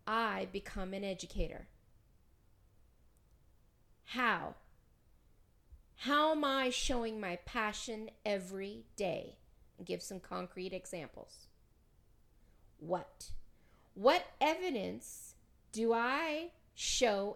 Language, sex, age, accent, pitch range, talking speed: English, female, 40-59, American, 190-250 Hz, 85 wpm